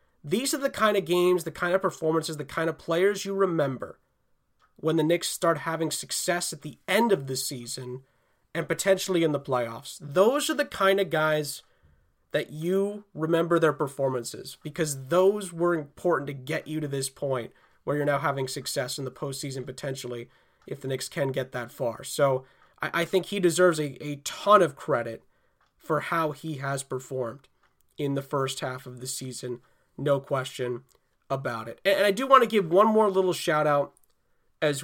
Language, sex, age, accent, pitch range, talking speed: English, male, 30-49, American, 135-180 Hz, 185 wpm